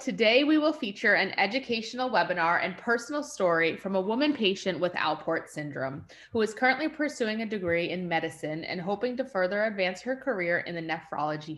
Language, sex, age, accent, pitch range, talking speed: English, female, 30-49, American, 165-215 Hz, 180 wpm